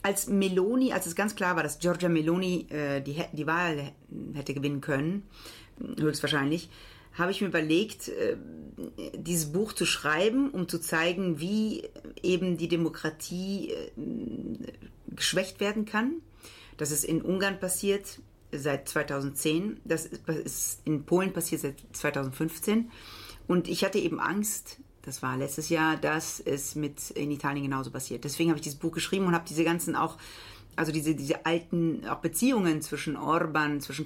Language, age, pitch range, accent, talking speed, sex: German, 40-59, 150-180 Hz, German, 155 wpm, female